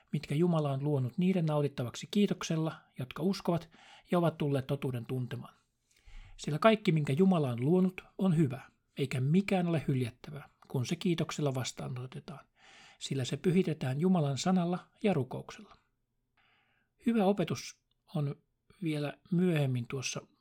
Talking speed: 125 wpm